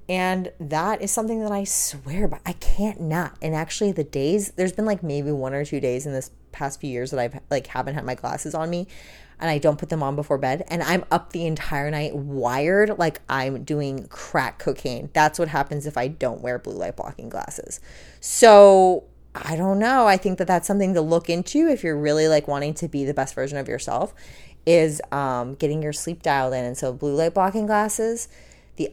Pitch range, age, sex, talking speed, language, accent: 140-175 Hz, 30-49, female, 220 wpm, English, American